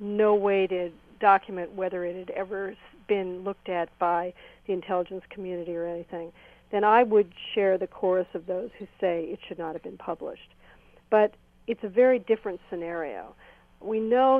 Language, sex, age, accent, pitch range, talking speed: English, female, 50-69, American, 180-225 Hz, 170 wpm